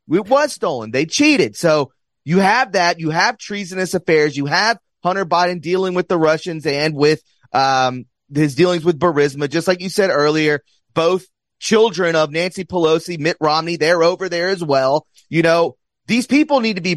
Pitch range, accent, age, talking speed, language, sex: 145-180 Hz, American, 30-49, 185 wpm, English, male